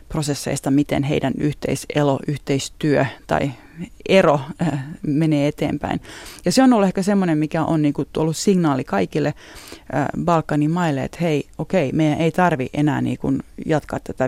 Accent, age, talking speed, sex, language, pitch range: native, 30-49, 125 wpm, female, Finnish, 145-170 Hz